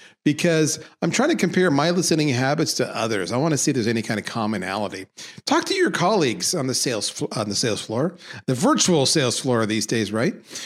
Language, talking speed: English, 220 wpm